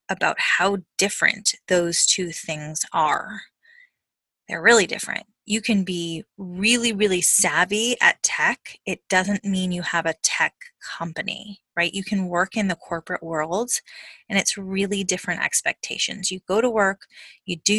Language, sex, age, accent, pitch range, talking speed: English, female, 20-39, American, 180-215 Hz, 150 wpm